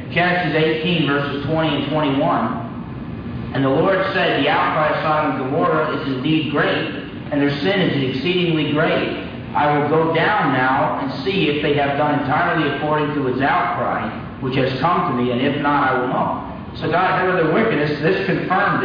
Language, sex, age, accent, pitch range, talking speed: English, male, 50-69, American, 135-160 Hz, 190 wpm